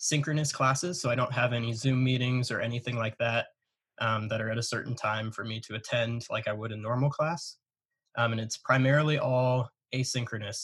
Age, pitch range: 20-39, 115-135 Hz